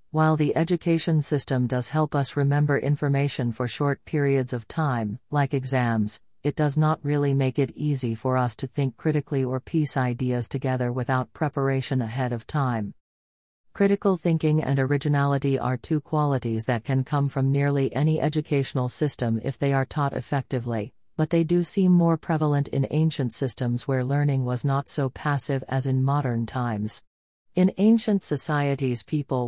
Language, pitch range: English, 130-155 Hz